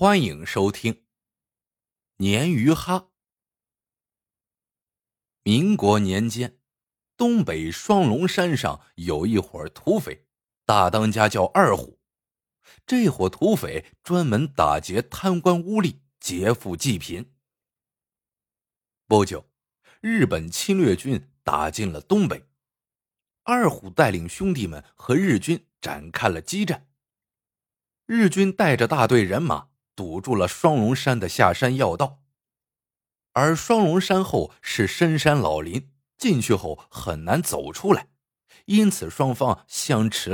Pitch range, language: 105-175 Hz, Chinese